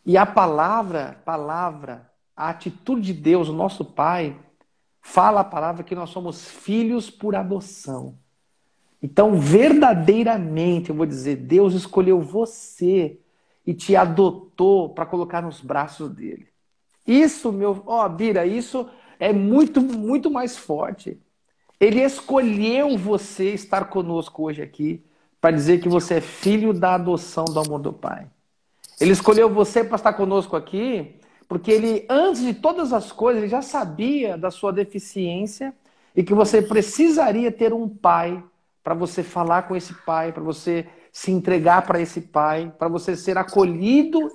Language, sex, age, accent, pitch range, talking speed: Portuguese, male, 50-69, Brazilian, 165-215 Hz, 145 wpm